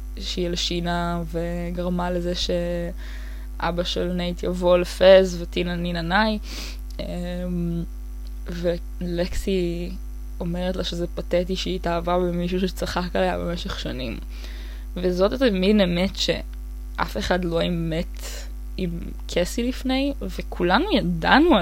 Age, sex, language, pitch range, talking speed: 20-39, female, Hebrew, 170-190 Hz, 105 wpm